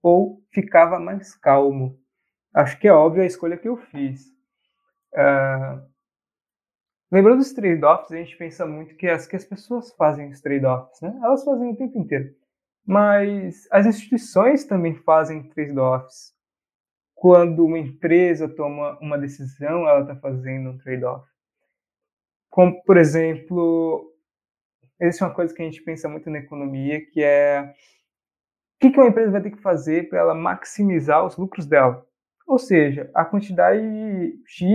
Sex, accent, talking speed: male, Brazilian, 150 wpm